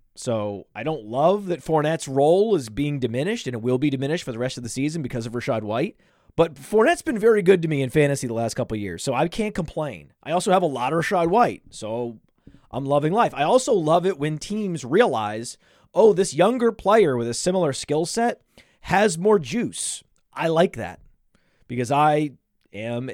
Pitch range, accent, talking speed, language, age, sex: 130-175 Hz, American, 205 wpm, English, 30-49, male